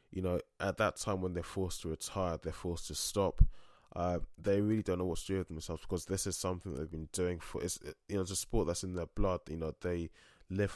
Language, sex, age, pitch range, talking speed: English, male, 20-39, 85-95 Hz, 255 wpm